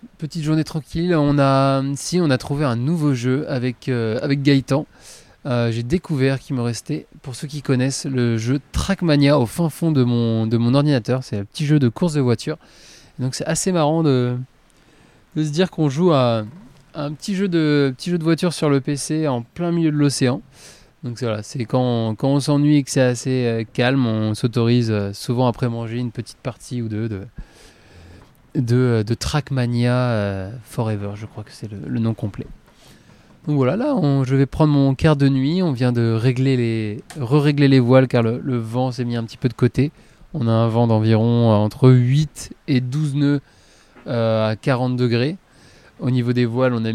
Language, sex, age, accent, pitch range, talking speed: French, male, 20-39, French, 115-145 Hz, 210 wpm